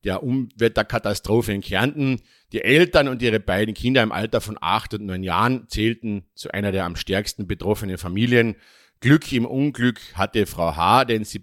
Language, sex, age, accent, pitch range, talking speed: English, male, 50-69, German, 95-120 Hz, 175 wpm